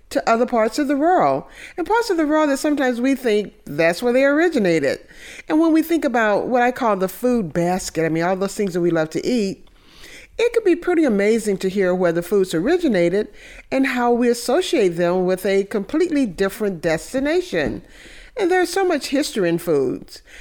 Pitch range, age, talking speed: 190-300 Hz, 50-69, 200 wpm